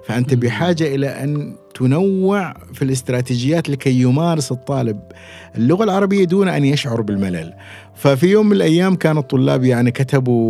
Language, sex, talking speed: Arabic, male, 135 wpm